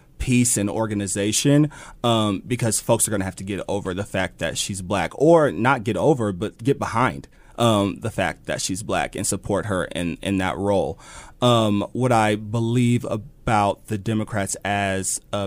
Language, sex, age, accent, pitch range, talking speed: English, male, 30-49, American, 100-120 Hz, 180 wpm